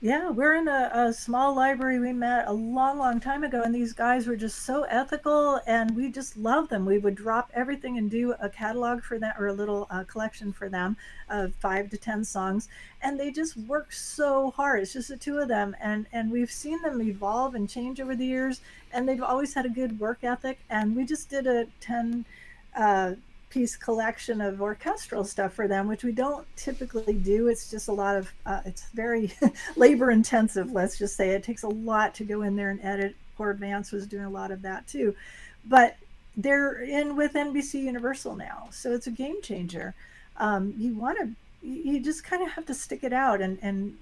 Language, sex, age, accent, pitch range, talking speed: English, female, 40-59, American, 205-260 Hz, 215 wpm